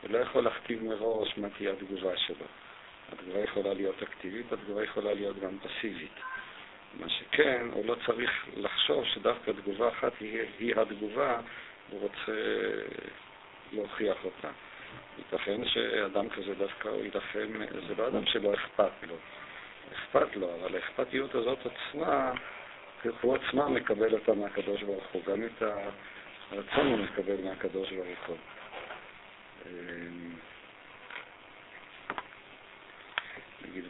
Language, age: Hebrew, 50-69